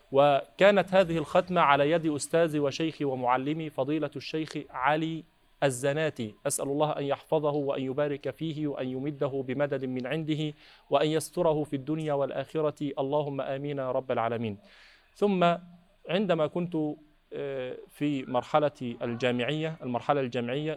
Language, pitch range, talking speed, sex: Arabic, 135-160 Hz, 120 wpm, male